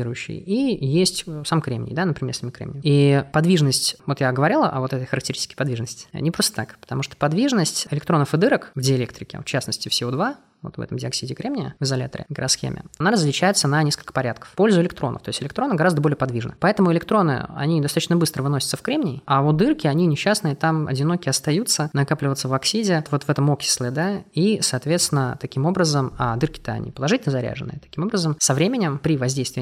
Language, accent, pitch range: Russian, native, 130-160 Hz